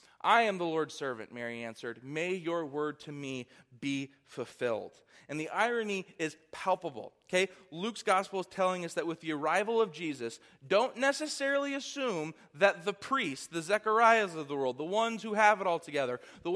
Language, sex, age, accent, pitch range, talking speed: English, male, 20-39, American, 145-200 Hz, 180 wpm